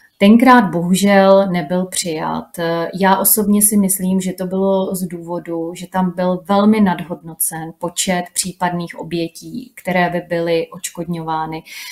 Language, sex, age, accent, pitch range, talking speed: Czech, female, 30-49, native, 165-190 Hz, 125 wpm